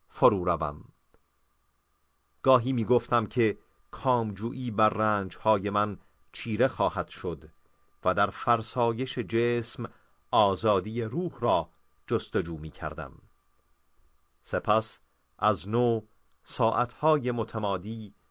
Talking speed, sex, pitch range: 80 wpm, male, 95-120 Hz